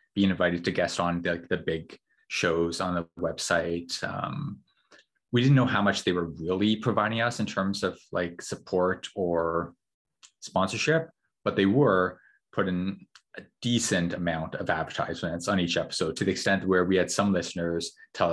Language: English